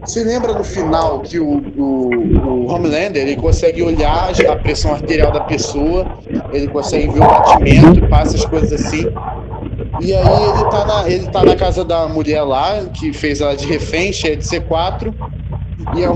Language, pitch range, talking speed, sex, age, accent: Portuguese, 140-200 Hz, 180 wpm, male, 20-39, Brazilian